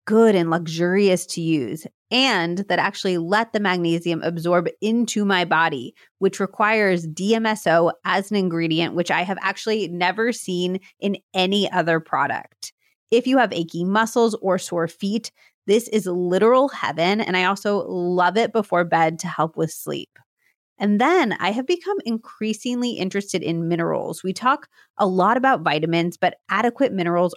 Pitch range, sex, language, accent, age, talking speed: 170-210 Hz, female, English, American, 30-49, 160 wpm